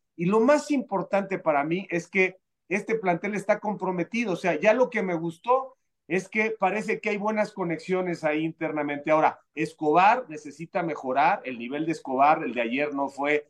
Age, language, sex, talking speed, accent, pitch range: 40-59, Spanish, male, 180 wpm, Mexican, 155-200 Hz